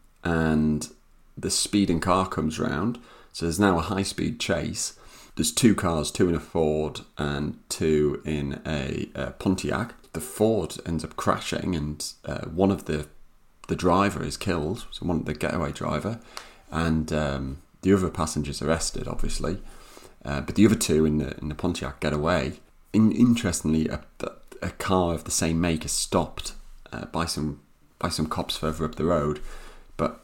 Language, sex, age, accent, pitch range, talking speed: English, male, 30-49, British, 75-85 Hz, 175 wpm